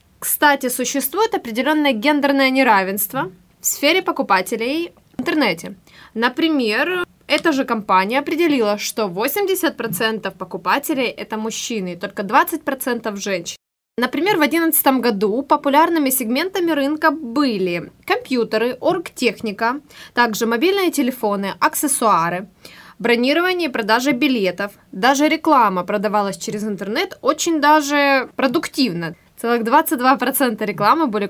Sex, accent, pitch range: female, native, 215-295 Hz